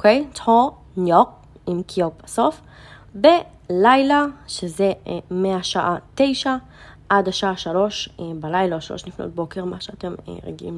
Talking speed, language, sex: 115 wpm, Hebrew, female